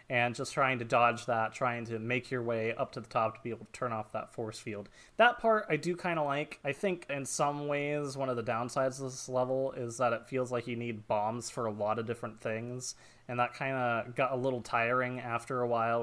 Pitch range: 120-145 Hz